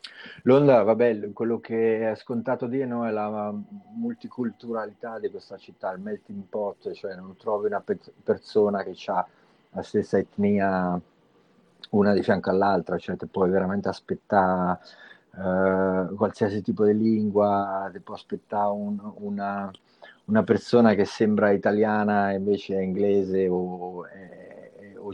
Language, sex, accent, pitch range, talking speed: Italian, male, native, 95-115 Hz, 135 wpm